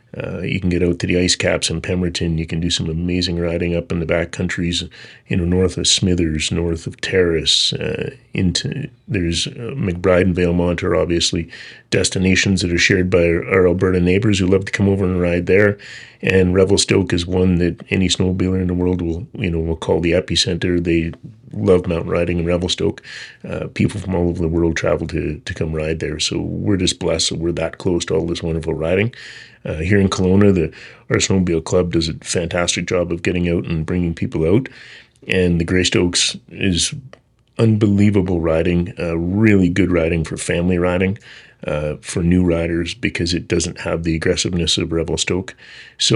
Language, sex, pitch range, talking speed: English, male, 85-95 Hz, 195 wpm